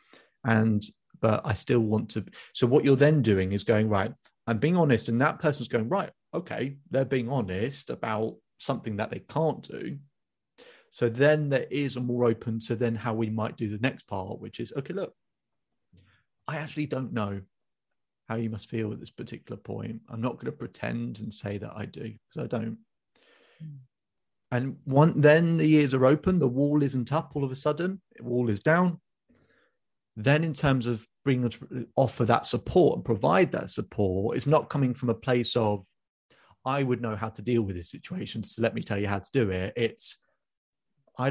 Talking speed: 195 wpm